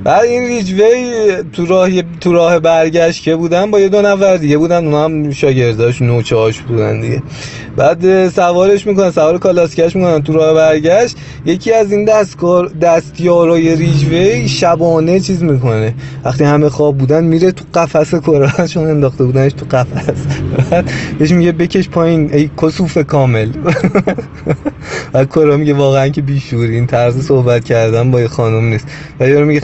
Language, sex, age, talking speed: Persian, male, 20-39, 155 wpm